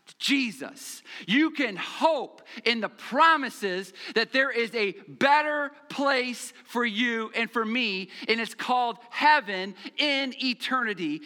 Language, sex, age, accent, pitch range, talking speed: English, male, 40-59, American, 225-285 Hz, 130 wpm